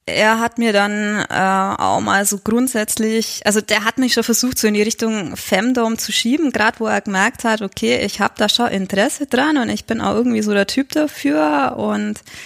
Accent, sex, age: German, female, 20-39